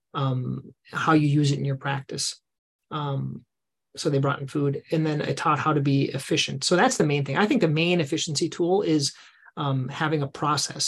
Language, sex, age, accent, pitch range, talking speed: English, male, 30-49, American, 140-155 Hz, 210 wpm